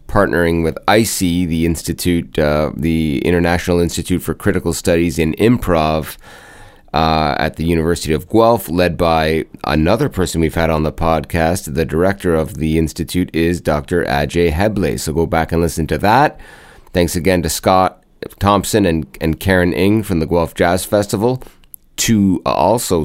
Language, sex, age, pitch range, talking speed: English, male, 30-49, 85-100 Hz, 160 wpm